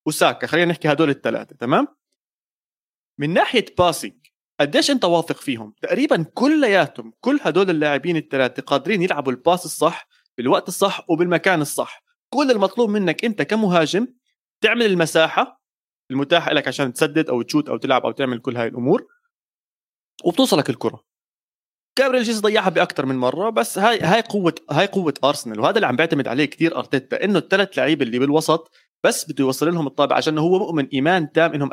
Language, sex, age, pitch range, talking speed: Arabic, male, 30-49, 140-195 Hz, 165 wpm